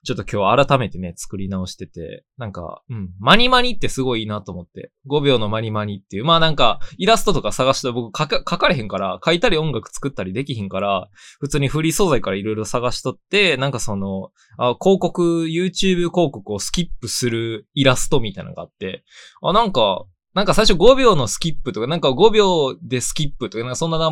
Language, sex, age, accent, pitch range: Japanese, male, 20-39, native, 110-165 Hz